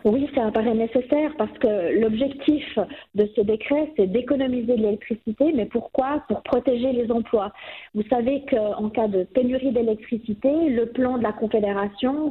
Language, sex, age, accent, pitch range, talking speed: French, female, 40-59, French, 210-265 Hz, 155 wpm